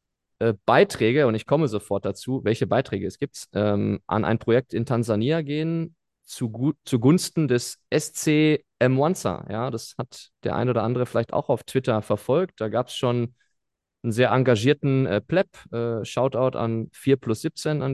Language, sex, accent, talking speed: German, male, German, 155 wpm